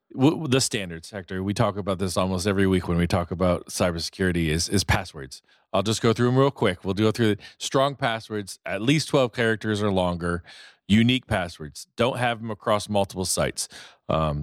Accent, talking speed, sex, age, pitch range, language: American, 190 wpm, male, 40-59, 95-120 Hz, English